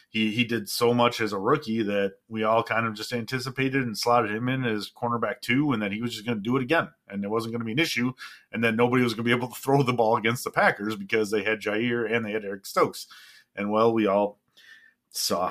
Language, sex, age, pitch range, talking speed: English, male, 30-49, 105-120 Hz, 265 wpm